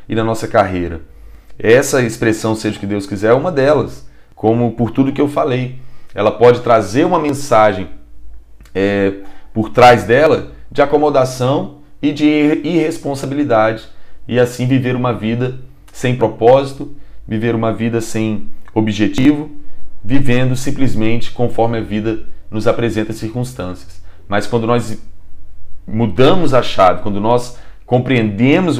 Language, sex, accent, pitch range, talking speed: Portuguese, male, Brazilian, 105-130 Hz, 135 wpm